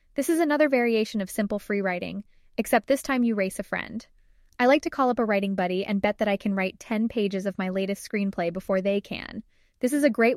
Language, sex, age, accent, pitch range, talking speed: English, female, 10-29, American, 195-230 Hz, 245 wpm